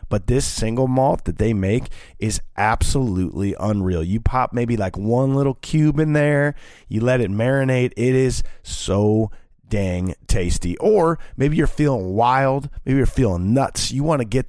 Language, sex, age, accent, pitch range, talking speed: English, male, 30-49, American, 95-130 Hz, 165 wpm